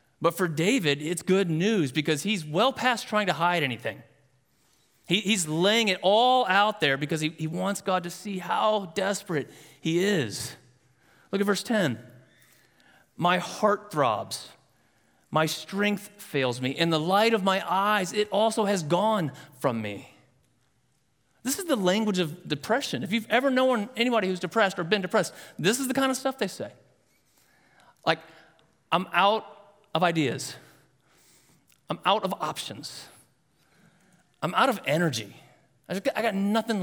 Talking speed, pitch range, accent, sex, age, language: 160 wpm, 145-210 Hz, American, male, 30-49, English